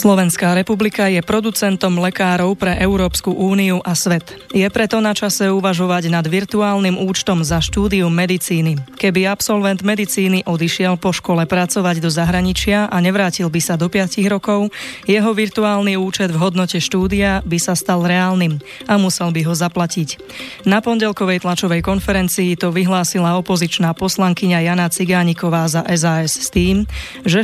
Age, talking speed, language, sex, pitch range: 20-39, 145 wpm, Slovak, female, 175-195 Hz